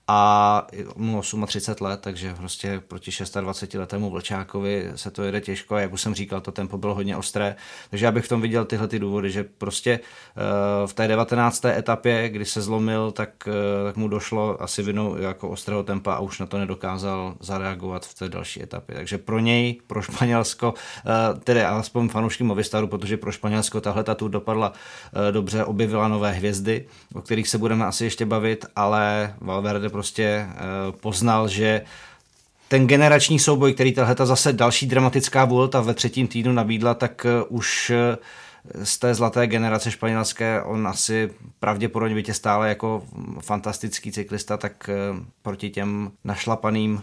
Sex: male